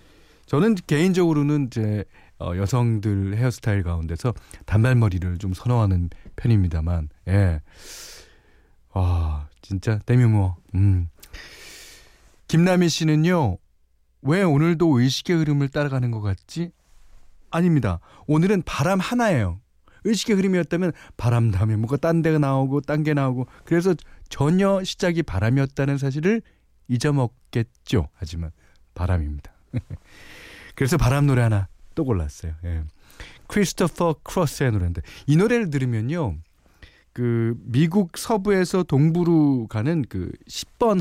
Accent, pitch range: native, 95-155 Hz